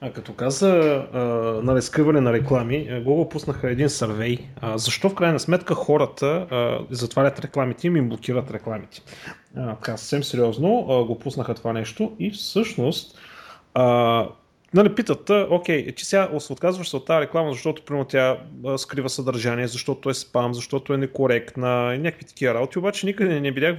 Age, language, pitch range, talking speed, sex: 30-49, Bulgarian, 125-160 Hz, 160 wpm, male